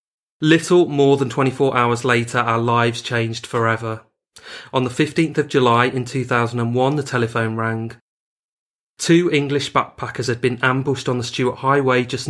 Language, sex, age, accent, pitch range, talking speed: English, male, 30-49, British, 120-135 Hz, 150 wpm